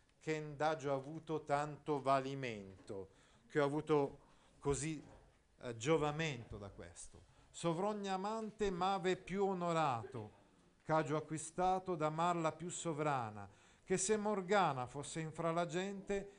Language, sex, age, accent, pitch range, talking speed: Italian, male, 50-69, native, 125-180 Hz, 115 wpm